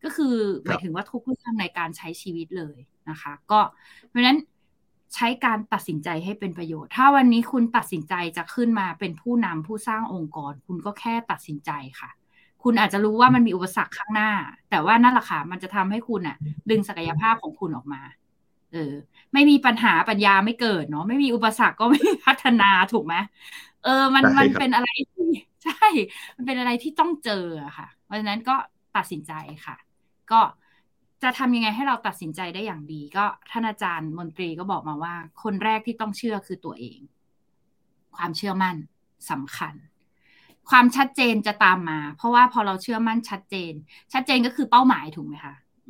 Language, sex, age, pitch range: Thai, female, 20-39, 170-240 Hz